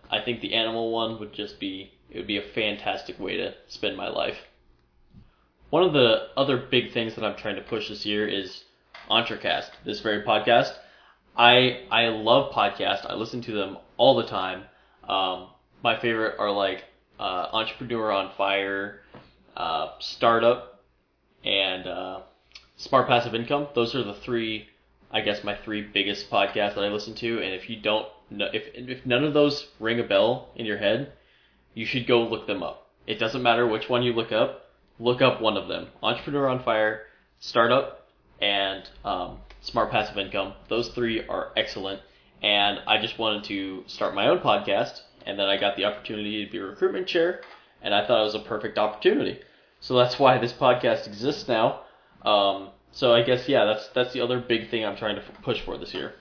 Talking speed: 190 wpm